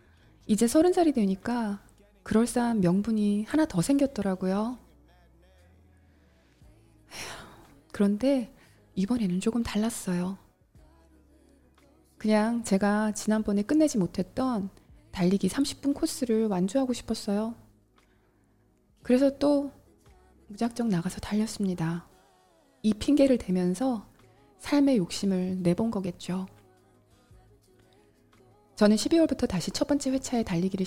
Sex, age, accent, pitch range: female, 20-39, native, 180-235 Hz